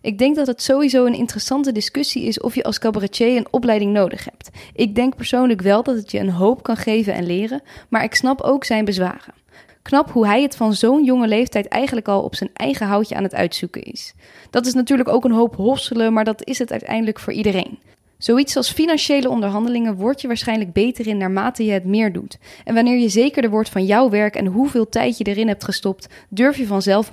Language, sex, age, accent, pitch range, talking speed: Dutch, female, 10-29, Dutch, 210-255 Hz, 220 wpm